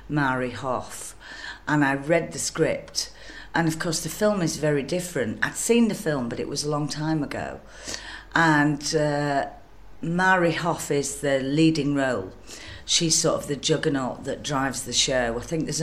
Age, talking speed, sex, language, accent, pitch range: 40-59, 175 wpm, female, English, British, 130-165 Hz